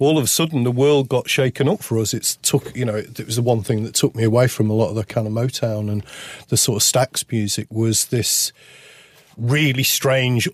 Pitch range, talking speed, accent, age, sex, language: 120-145 Hz, 240 wpm, British, 40-59, male, English